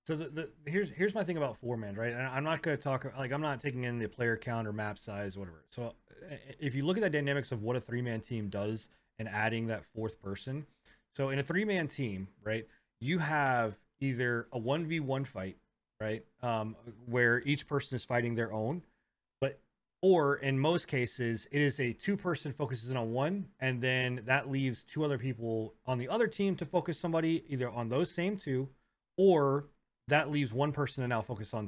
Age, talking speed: 30-49, 210 wpm